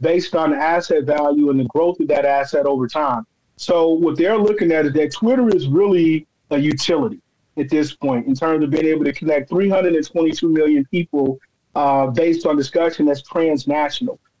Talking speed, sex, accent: 180 wpm, male, American